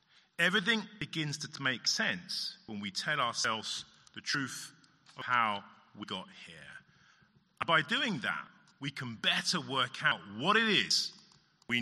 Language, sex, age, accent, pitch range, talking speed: English, male, 40-59, British, 125-185 Hz, 140 wpm